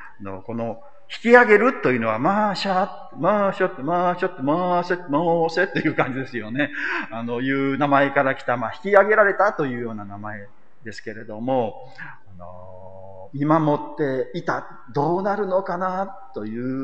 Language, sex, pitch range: Japanese, male, 125-175 Hz